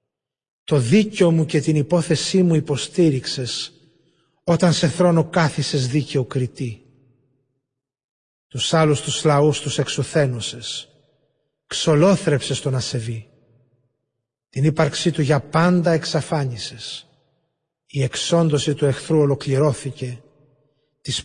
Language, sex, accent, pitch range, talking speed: Greek, male, native, 135-165 Hz, 100 wpm